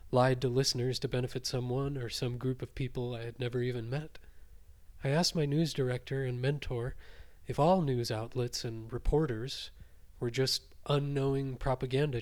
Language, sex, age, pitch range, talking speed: English, male, 20-39, 110-135 Hz, 160 wpm